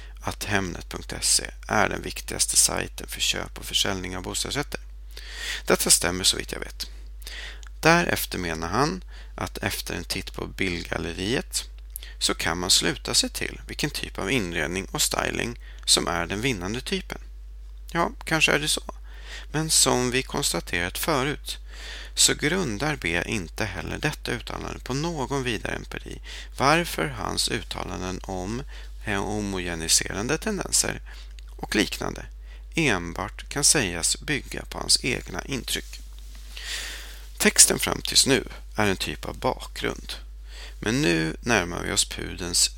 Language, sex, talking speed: Swedish, male, 135 wpm